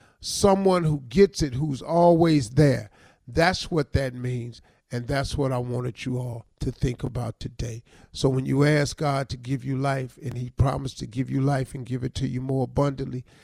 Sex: male